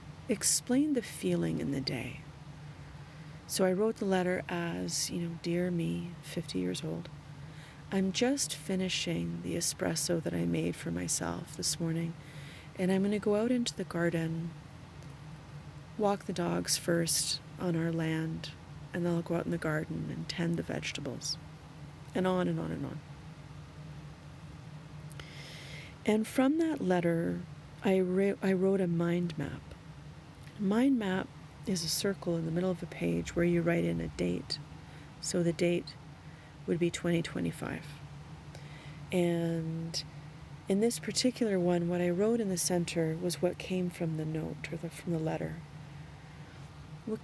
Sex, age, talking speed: female, 30-49, 150 wpm